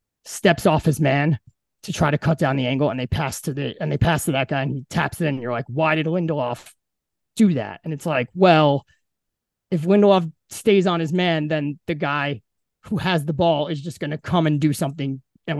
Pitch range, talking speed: 145-200 Hz, 230 wpm